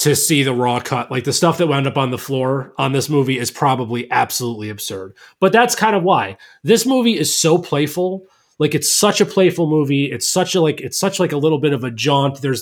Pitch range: 130-170 Hz